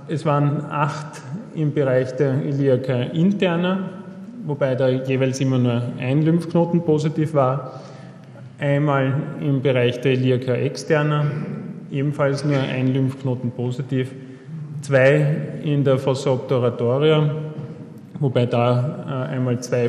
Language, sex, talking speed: German, male, 110 wpm